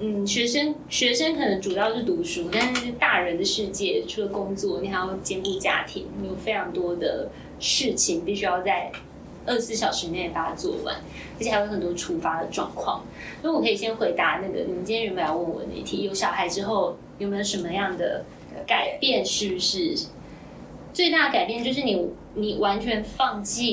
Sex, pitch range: female, 200-280 Hz